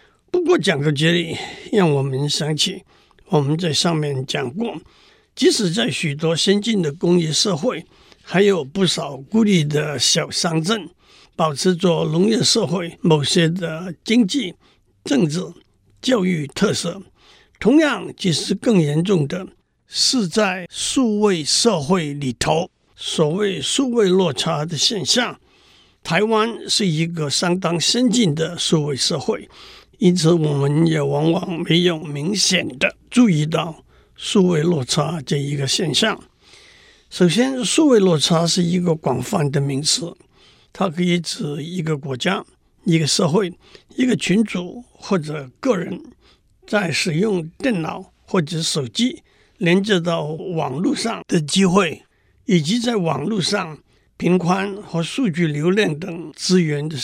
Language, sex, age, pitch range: Chinese, male, 60-79, 155-200 Hz